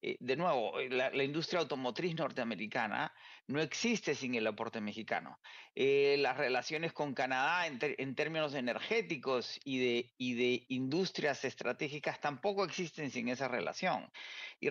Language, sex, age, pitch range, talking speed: Spanish, male, 40-59, 130-165 Hz, 145 wpm